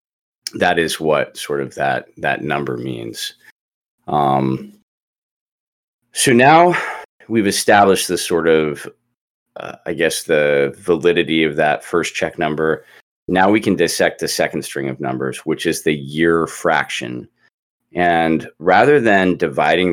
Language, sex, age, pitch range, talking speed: English, male, 30-49, 70-90 Hz, 135 wpm